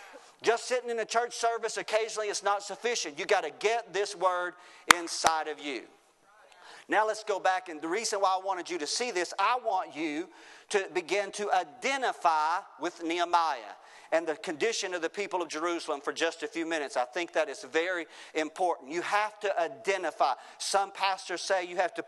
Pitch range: 165-205 Hz